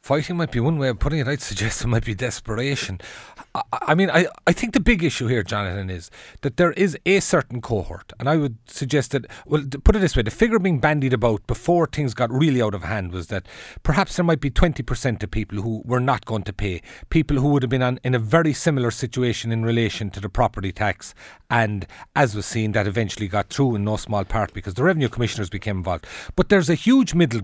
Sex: male